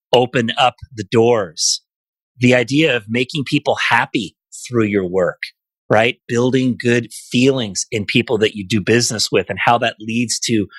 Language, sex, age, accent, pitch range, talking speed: English, male, 30-49, American, 105-125 Hz, 160 wpm